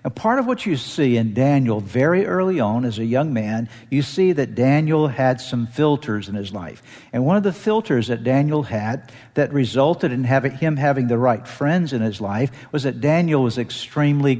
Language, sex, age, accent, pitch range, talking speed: English, male, 60-79, American, 125-165 Hz, 205 wpm